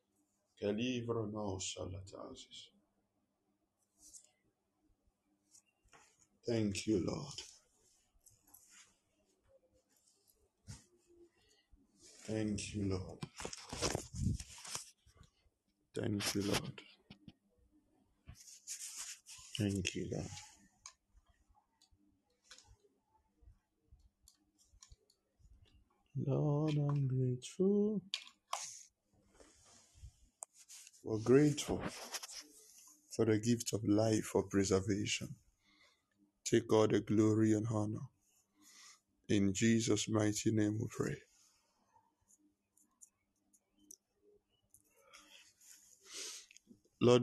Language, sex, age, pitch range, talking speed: English, male, 60-79, 100-120 Hz, 50 wpm